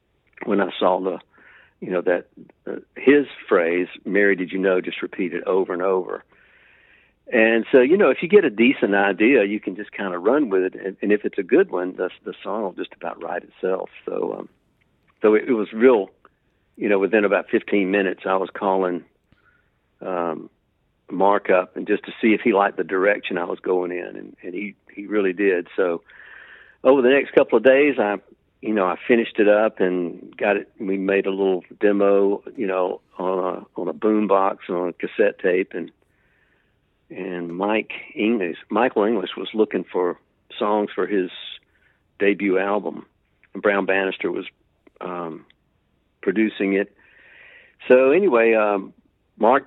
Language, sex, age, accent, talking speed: English, male, 60-79, American, 180 wpm